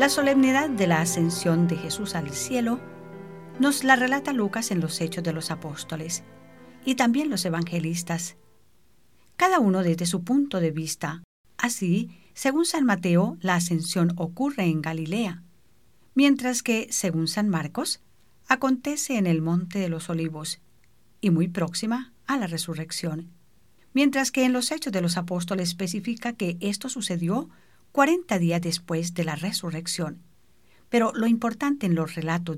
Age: 50-69